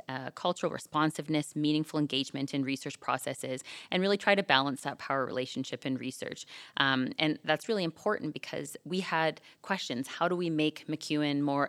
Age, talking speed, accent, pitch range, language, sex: 20-39, 170 wpm, American, 135-155 Hz, English, female